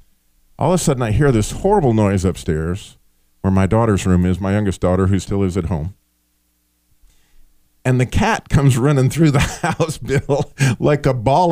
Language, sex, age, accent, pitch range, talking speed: English, male, 40-59, American, 95-140 Hz, 180 wpm